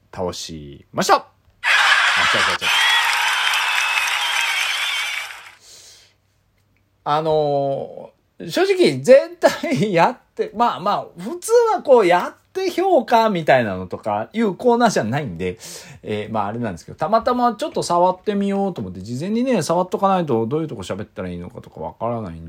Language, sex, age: Japanese, male, 40-59